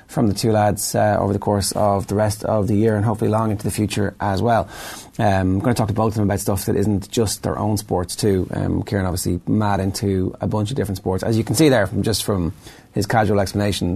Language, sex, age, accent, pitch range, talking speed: English, male, 30-49, Irish, 100-120 Hz, 260 wpm